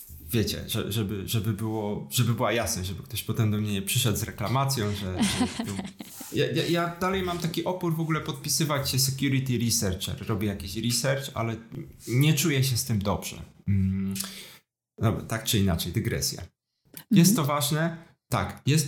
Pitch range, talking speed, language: 110-140 Hz, 160 wpm, Polish